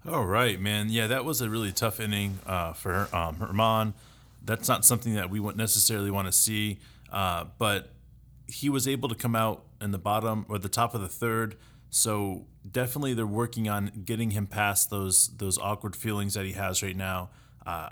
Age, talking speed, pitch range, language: 30-49, 200 wpm, 100-120 Hz, English